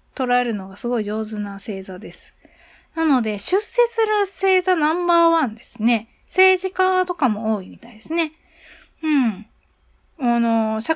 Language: Japanese